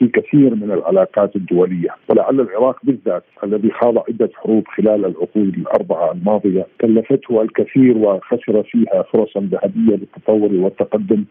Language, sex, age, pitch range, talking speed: Arabic, male, 50-69, 110-135 Hz, 125 wpm